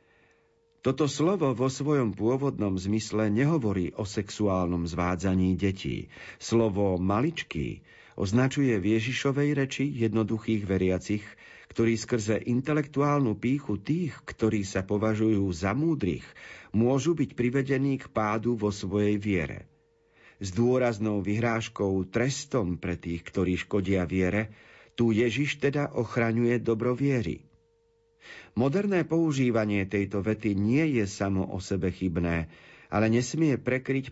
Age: 50-69